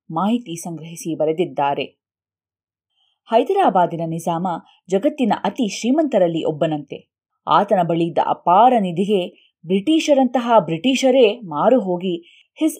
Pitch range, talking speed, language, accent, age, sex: 160-240 Hz, 85 wpm, Kannada, native, 20-39, female